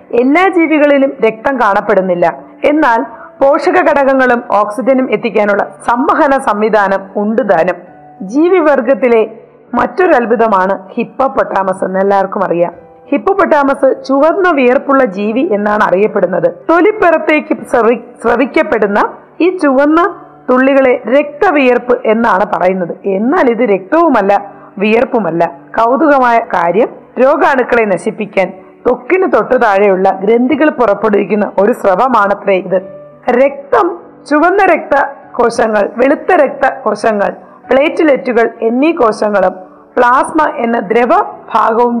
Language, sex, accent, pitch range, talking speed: Malayalam, female, native, 210-290 Hz, 90 wpm